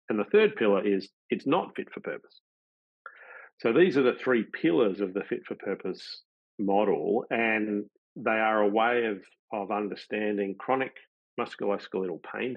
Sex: male